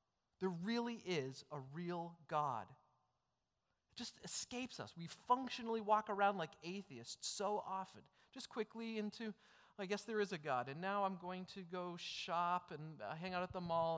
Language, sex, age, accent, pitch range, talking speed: English, male, 30-49, American, 150-205 Hz, 175 wpm